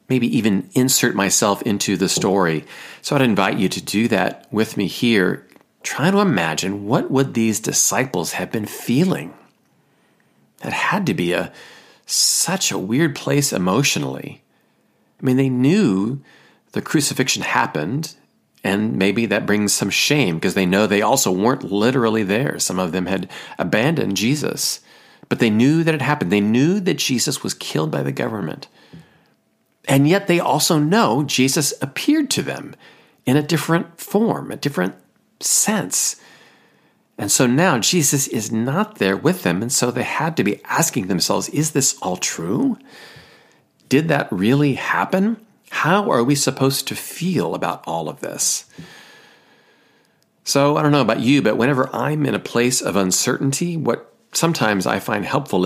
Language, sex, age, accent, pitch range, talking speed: English, male, 40-59, American, 100-150 Hz, 160 wpm